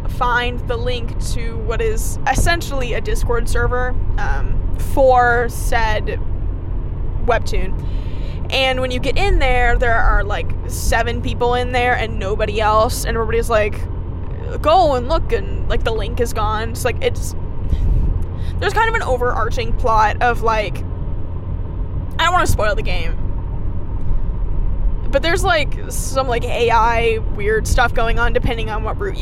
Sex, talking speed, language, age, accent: female, 150 wpm, English, 10-29, American